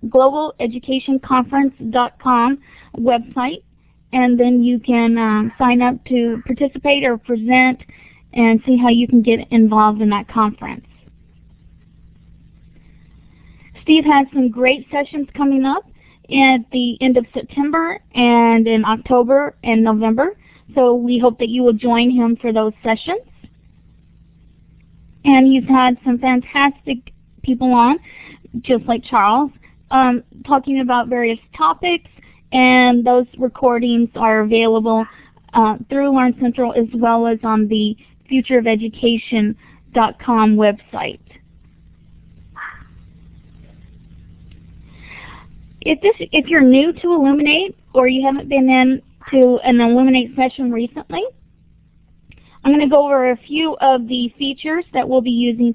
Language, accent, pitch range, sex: English, American, 235-270 Hz, female